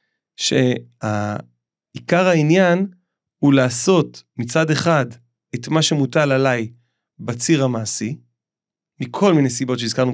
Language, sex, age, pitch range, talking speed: Hebrew, male, 30-49, 130-185 Hz, 100 wpm